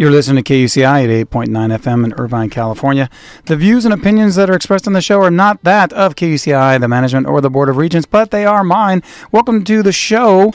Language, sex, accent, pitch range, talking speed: English, male, American, 115-155 Hz, 230 wpm